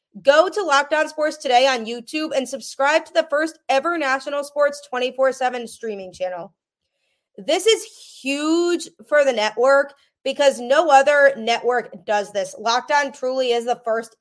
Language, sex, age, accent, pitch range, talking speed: English, female, 20-39, American, 215-260 Hz, 150 wpm